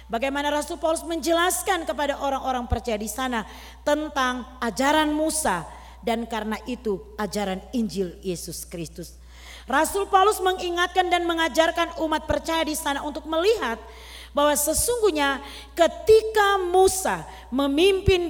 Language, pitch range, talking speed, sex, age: Malay, 215-335 Hz, 115 wpm, female, 40-59